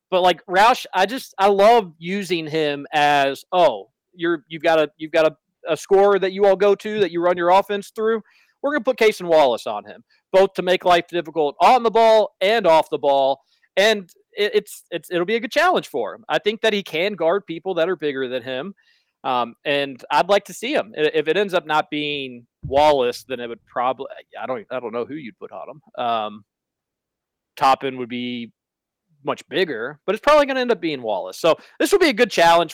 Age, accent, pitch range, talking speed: 40-59, American, 145-190 Hz, 225 wpm